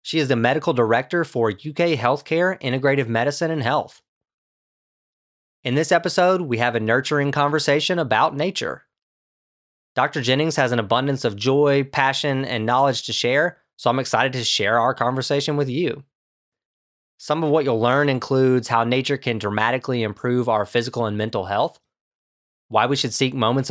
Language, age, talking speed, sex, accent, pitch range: English, 20-39, 160 wpm, male, American, 115-145 Hz